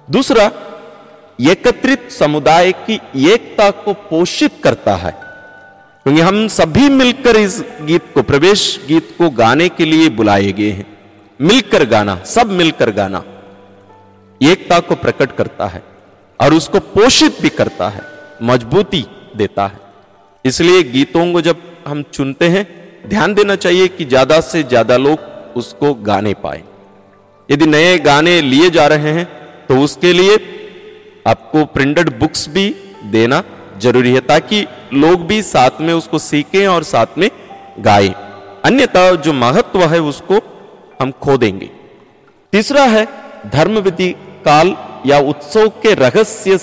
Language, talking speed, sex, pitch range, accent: Hindi, 140 wpm, male, 120-200 Hz, native